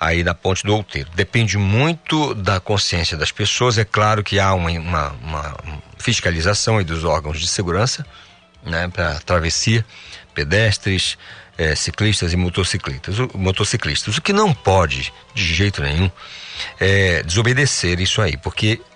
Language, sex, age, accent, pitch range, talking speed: Portuguese, male, 50-69, Brazilian, 80-110 Hz, 145 wpm